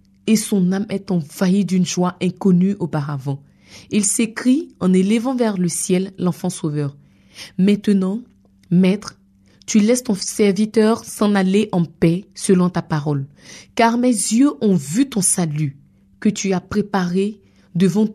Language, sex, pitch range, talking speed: French, female, 175-220 Hz, 140 wpm